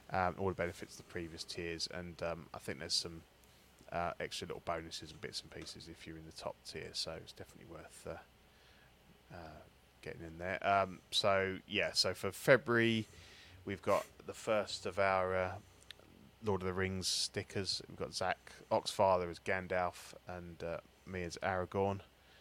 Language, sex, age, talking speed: English, male, 20-39, 175 wpm